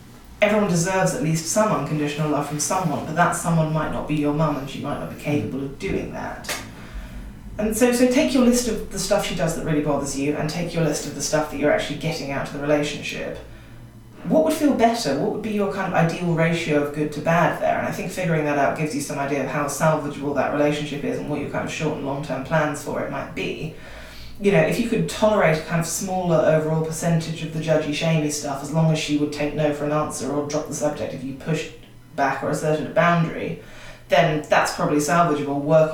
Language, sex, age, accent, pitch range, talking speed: English, female, 20-39, British, 145-165 Hz, 240 wpm